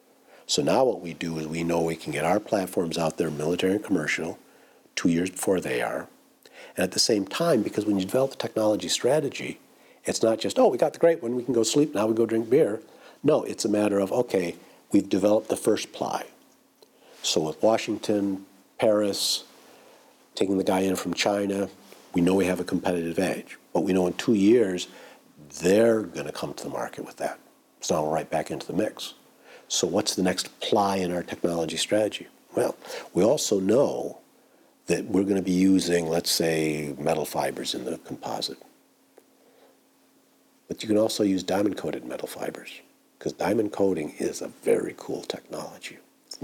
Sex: male